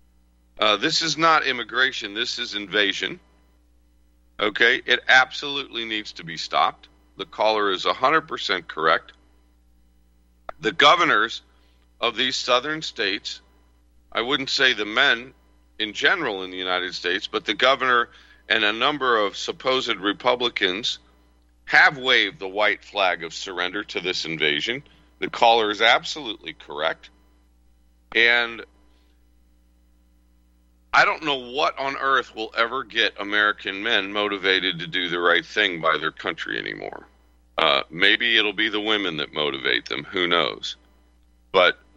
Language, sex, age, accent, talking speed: English, male, 40-59, American, 135 wpm